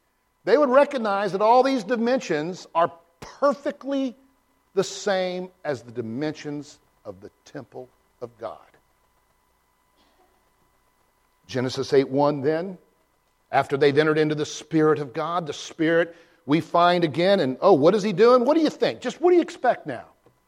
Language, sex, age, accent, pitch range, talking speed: English, male, 50-69, American, 120-170 Hz, 150 wpm